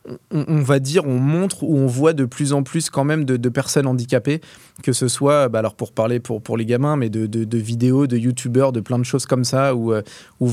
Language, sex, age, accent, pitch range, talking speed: French, male, 20-39, French, 120-145 Hz, 245 wpm